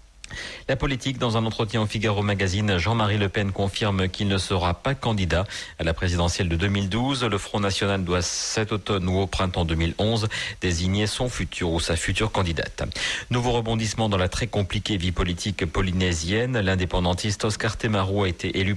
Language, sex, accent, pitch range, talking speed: French, male, French, 90-110 Hz, 175 wpm